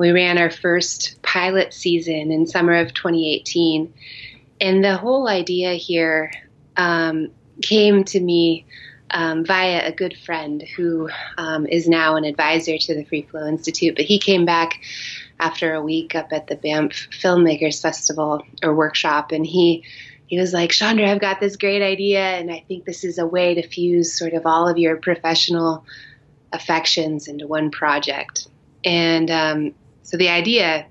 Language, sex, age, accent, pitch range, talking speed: English, female, 20-39, American, 155-180 Hz, 165 wpm